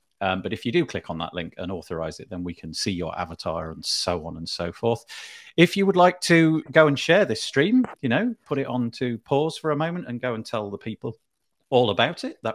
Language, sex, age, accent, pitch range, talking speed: English, male, 40-59, British, 95-135 Hz, 260 wpm